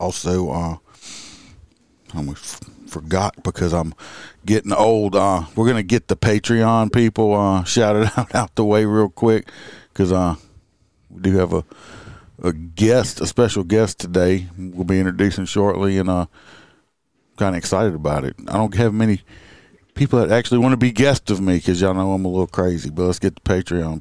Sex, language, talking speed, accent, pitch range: male, English, 180 wpm, American, 90-110 Hz